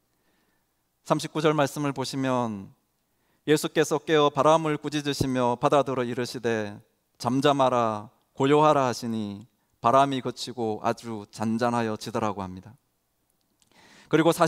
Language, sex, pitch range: Korean, male, 100-150 Hz